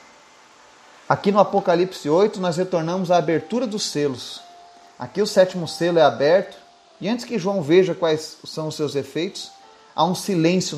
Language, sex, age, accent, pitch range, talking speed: Portuguese, male, 30-49, Brazilian, 145-185 Hz, 160 wpm